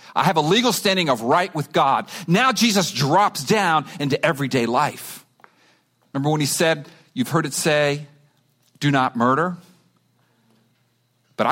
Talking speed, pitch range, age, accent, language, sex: 145 wpm, 140-200 Hz, 50-69, American, English, male